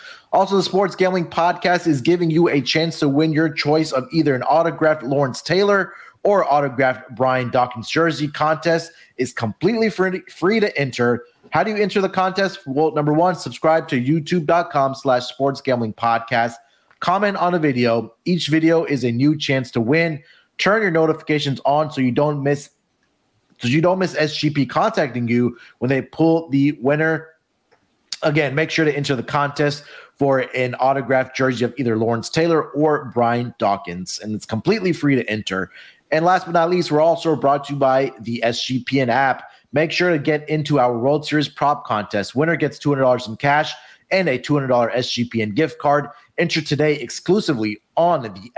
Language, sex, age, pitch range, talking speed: English, male, 30-49, 125-165 Hz, 175 wpm